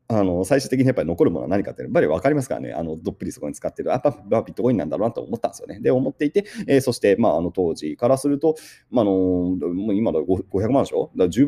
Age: 30-49